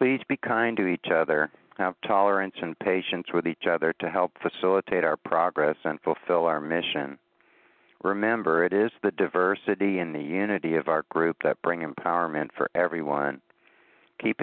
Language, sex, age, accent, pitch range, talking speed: English, male, 50-69, American, 80-95 Hz, 160 wpm